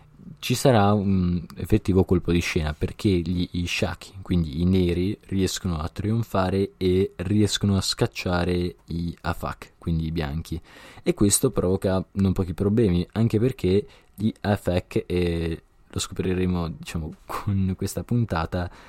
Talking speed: 135 wpm